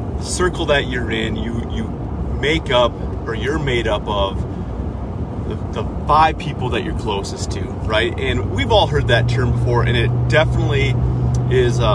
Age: 30-49